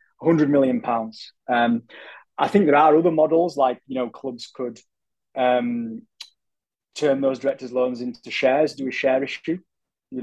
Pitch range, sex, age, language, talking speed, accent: 125-155 Hz, male, 20-39, English, 160 wpm, British